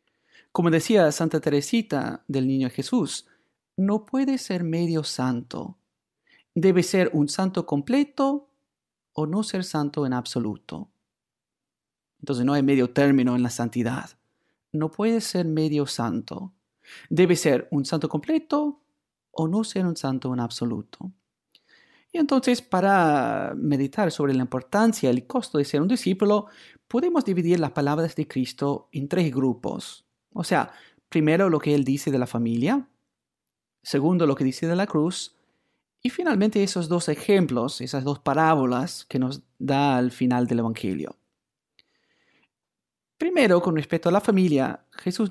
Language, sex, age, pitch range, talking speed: Spanish, male, 40-59, 140-200 Hz, 145 wpm